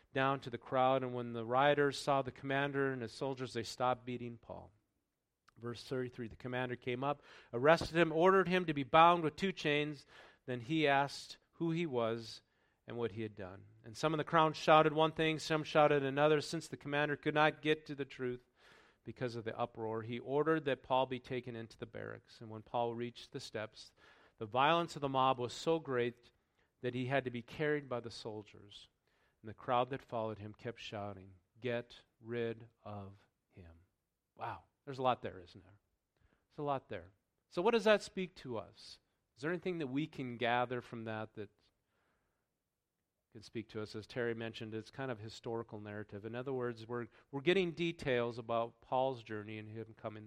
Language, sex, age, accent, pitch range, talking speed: English, male, 40-59, American, 110-140 Hz, 200 wpm